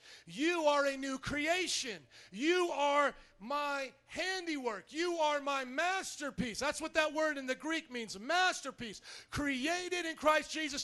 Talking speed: 145 wpm